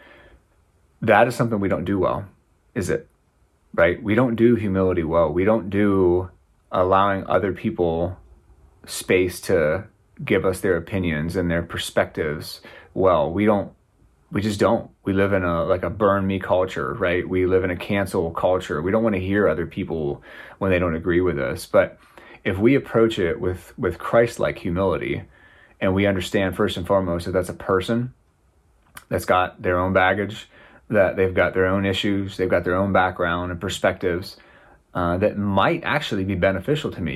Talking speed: 175 wpm